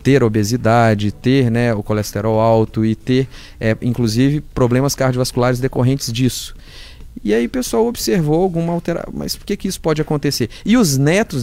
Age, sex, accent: 30-49, male, Brazilian